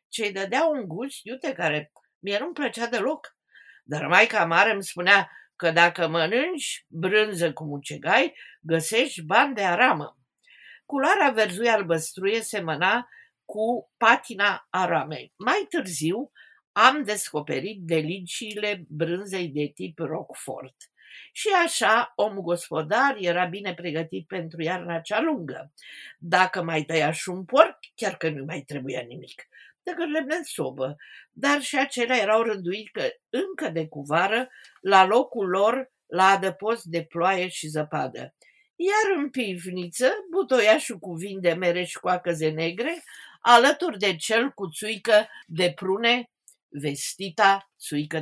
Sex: female